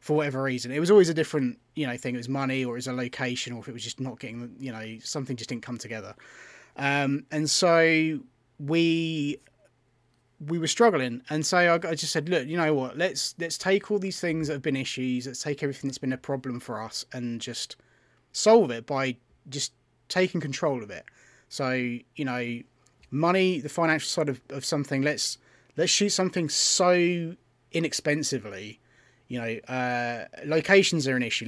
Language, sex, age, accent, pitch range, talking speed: English, male, 20-39, British, 125-155 Hz, 195 wpm